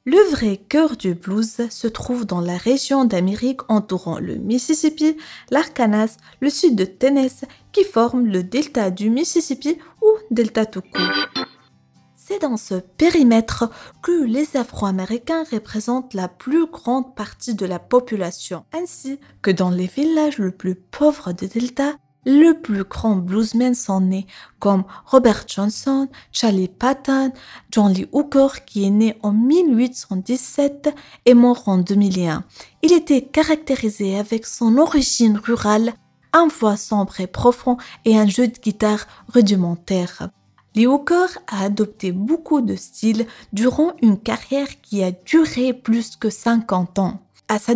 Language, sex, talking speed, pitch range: French, female, 145 wpm, 200-275 Hz